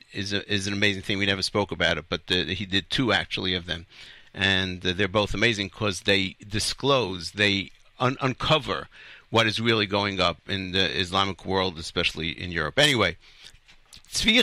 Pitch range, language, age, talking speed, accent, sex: 100-140 Hz, English, 50-69, 180 wpm, American, male